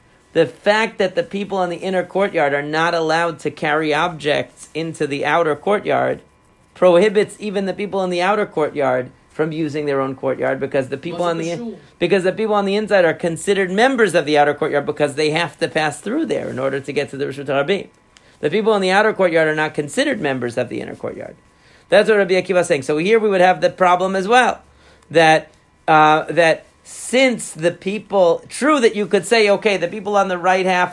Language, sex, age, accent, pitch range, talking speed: English, male, 40-59, American, 155-195 Hz, 220 wpm